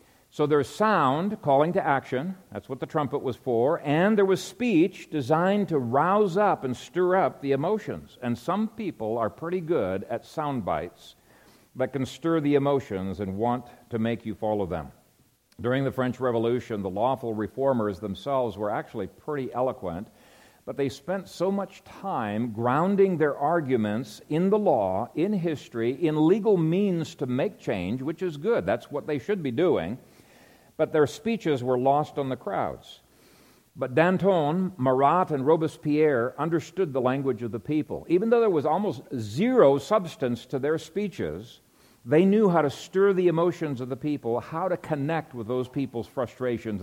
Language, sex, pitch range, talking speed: English, male, 125-170 Hz, 170 wpm